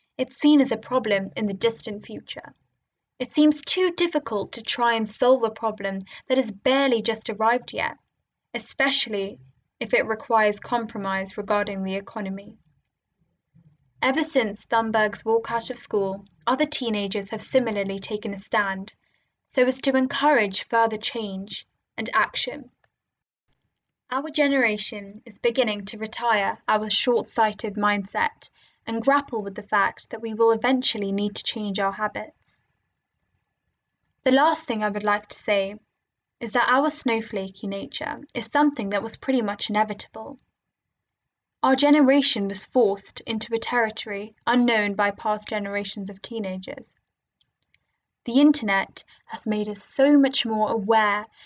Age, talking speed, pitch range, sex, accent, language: 10-29, 140 wpm, 205-255 Hz, female, British, English